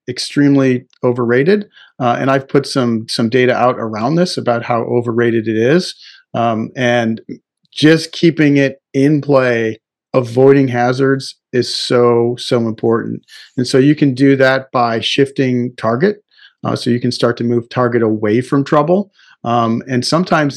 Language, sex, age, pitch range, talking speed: English, male, 40-59, 120-140 Hz, 155 wpm